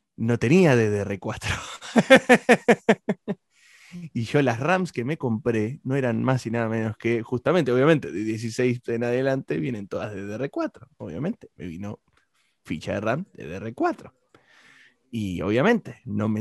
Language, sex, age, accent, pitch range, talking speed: Spanish, male, 20-39, Argentinian, 120-175 Hz, 145 wpm